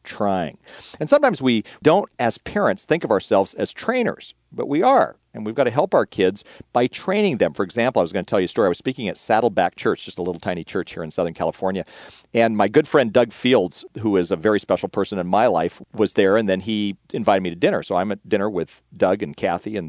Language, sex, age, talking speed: English, male, 40-59, 250 wpm